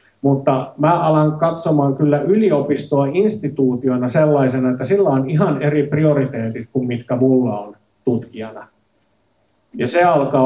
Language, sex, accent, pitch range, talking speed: Finnish, male, native, 125-145 Hz, 125 wpm